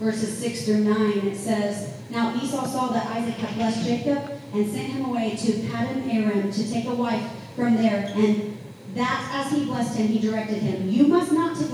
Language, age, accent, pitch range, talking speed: English, 40-59, American, 215-285 Hz, 205 wpm